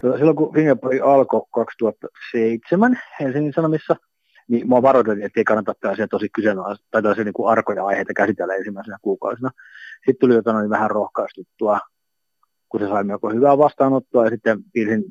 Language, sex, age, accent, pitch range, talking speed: Finnish, male, 30-49, native, 105-140 Hz, 155 wpm